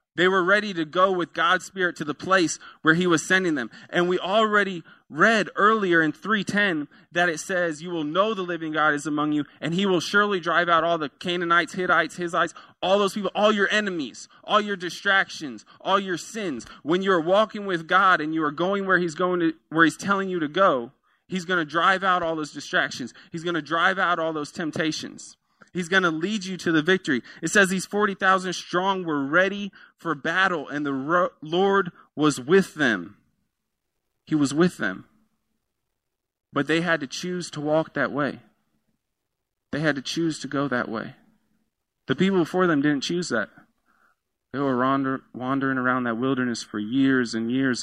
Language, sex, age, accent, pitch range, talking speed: English, male, 20-39, American, 150-185 Hz, 195 wpm